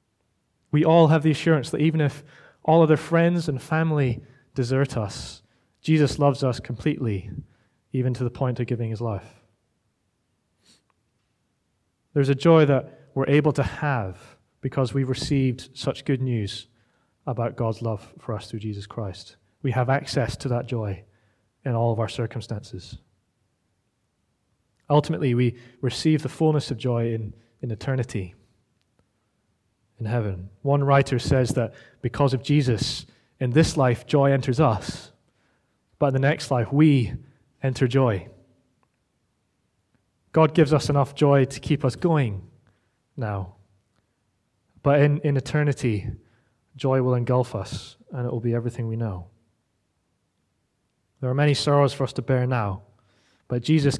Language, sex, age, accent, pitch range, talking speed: English, male, 20-39, British, 115-140 Hz, 145 wpm